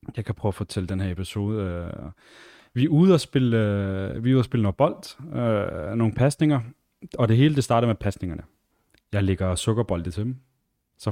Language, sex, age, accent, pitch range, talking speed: Danish, male, 30-49, native, 90-115 Hz, 165 wpm